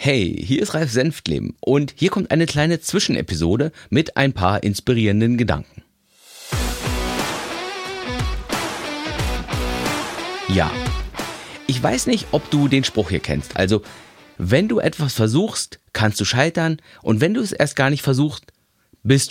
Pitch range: 95-150 Hz